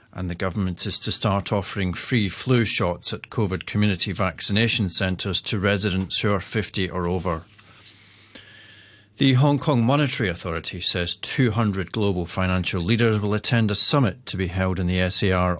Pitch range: 95-115 Hz